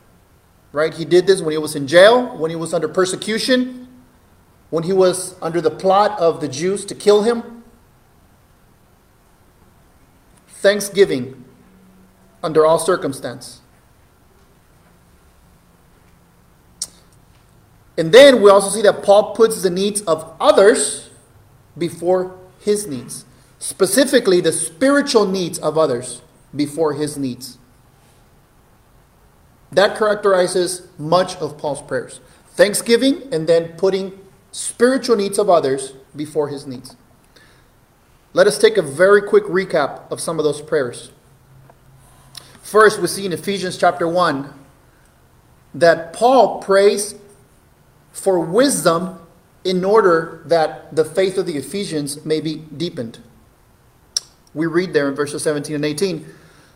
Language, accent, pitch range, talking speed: English, American, 145-195 Hz, 120 wpm